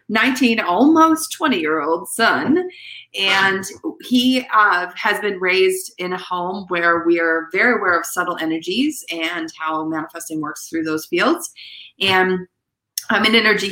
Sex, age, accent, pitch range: female, 30-49, American, 175-255 Hz